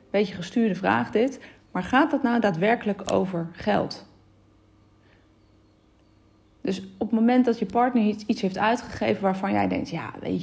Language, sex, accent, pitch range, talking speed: Dutch, female, Dutch, 175-215 Hz, 150 wpm